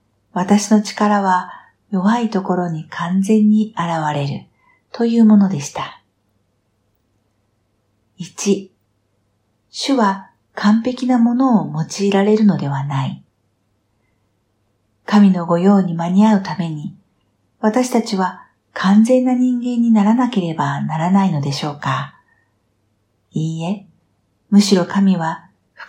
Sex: female